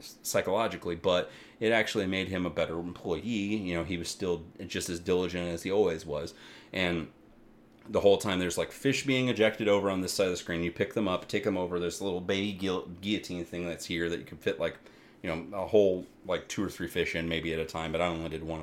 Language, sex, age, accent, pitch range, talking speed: English, male, 30-49, American, 85-100 Hz, 240 wpm